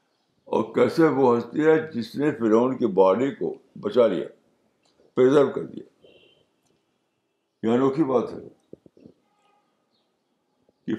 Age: 60-79